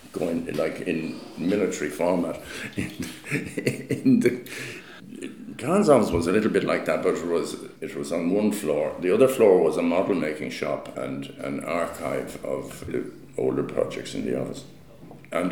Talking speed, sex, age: 175 wpm, male, 60-79